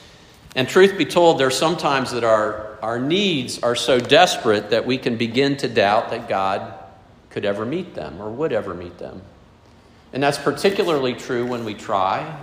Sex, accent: male, American